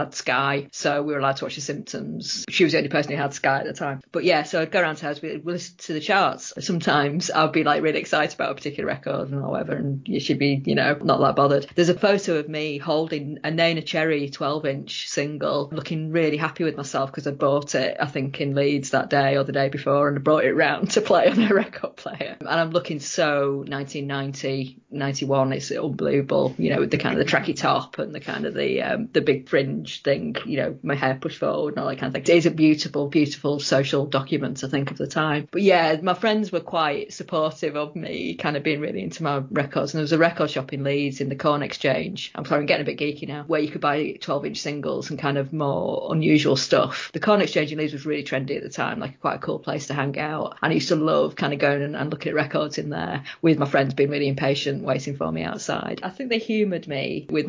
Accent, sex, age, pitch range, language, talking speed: British, female, 30-49, 140-165 Hz, English, 260 wpm